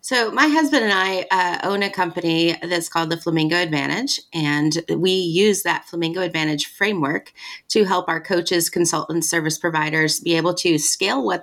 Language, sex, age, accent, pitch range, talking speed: English, female, 30-49, American, 155-185 Hz, 175 wpm